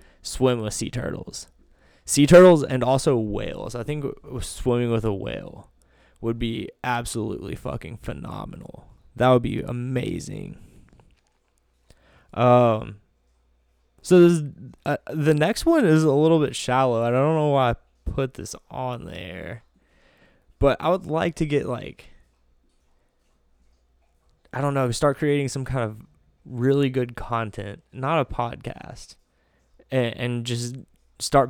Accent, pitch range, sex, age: American, 105-135 Hz, male, 20-39